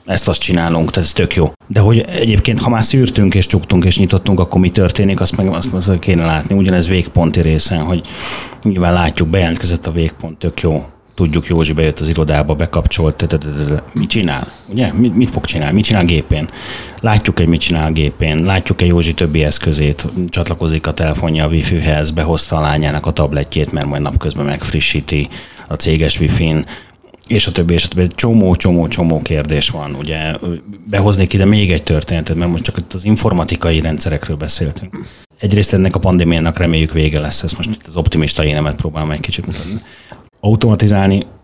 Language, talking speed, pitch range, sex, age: Hungarian, 180 wpm, 80-95 Hz, male, 30-49